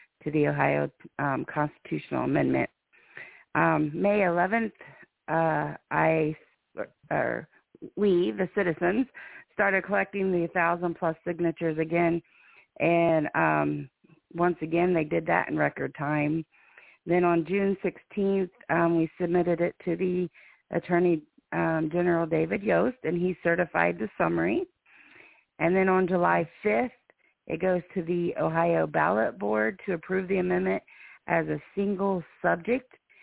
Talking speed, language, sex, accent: 130 wpm, English, female, American